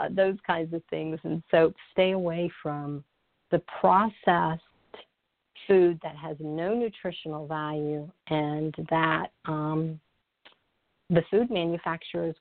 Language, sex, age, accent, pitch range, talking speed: English, female, 50-69, American, 165-195 Hz, 110 wpm